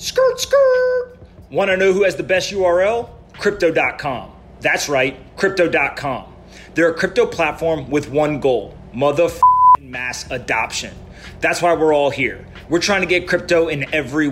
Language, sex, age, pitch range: English, male, 30-49, 140-175 Hz